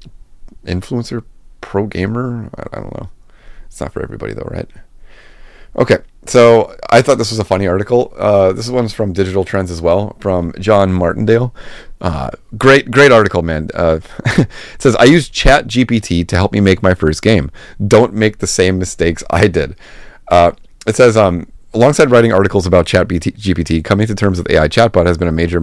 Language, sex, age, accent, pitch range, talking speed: English, male, 30-49, American, 85-110 Hz, 185 wpm